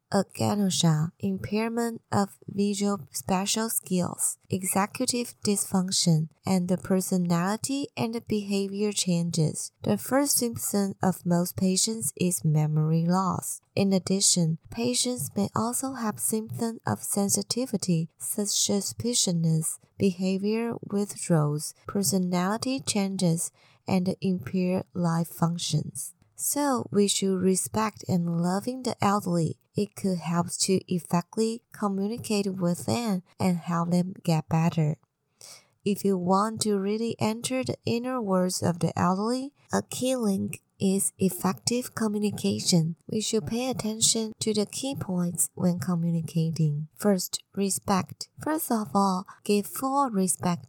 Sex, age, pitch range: female, 20-39, 170-210 Hz